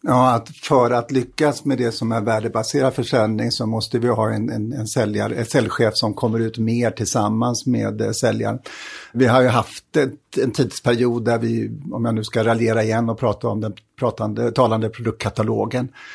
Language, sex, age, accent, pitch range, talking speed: Swedish, male, 60-79, native, 105-120 Hz, 180 wpm